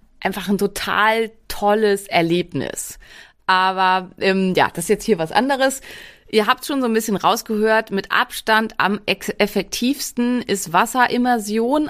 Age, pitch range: 30-49, 170-220 Hz